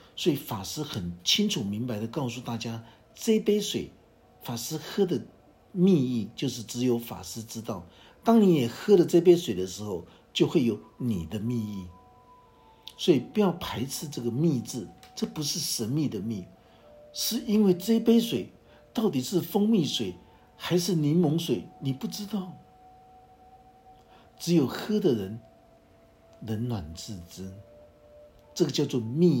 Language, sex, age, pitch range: Chinese, male, 60-79, 115-180 Hz